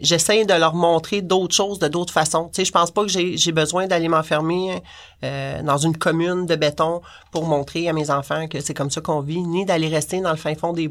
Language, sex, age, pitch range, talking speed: French, male, 30-49, 150-175 Hz, 250 wpm